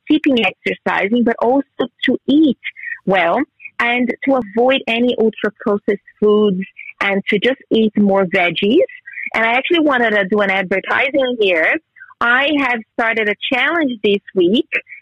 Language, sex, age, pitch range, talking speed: English, female, 30-49, 210-265 Hz, 140 wpm